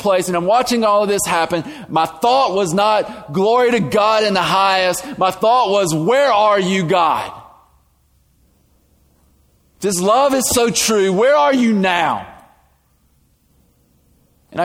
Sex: male